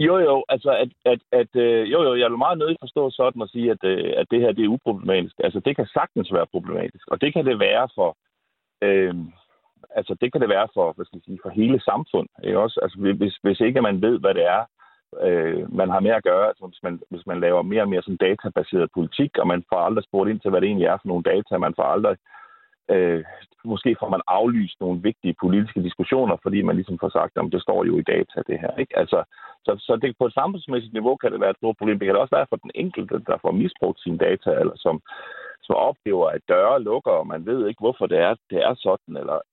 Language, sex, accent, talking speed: Danish, male, native, 245 wpm